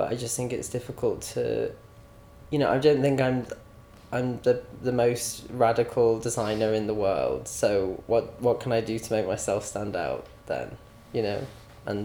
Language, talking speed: English, 180 wpm